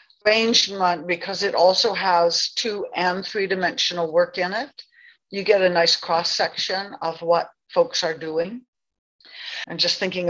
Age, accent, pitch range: 60-79, American, 165-210 Hz